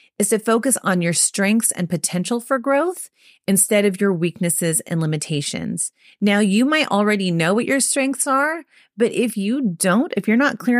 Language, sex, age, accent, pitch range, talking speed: English, female, 30-49, American, 165-235 Hz, 185 wpm